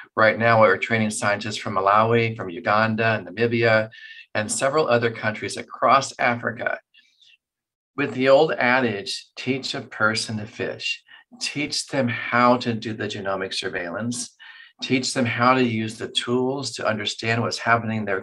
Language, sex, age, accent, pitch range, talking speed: English, male, 40-59, American, 105-125 Hz, 155 wpm